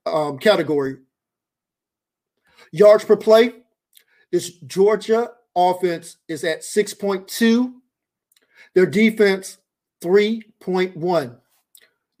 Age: 50-69